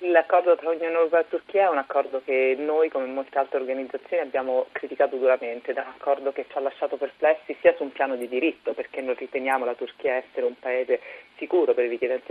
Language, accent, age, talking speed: Italian, native, 30-49, 215 wpm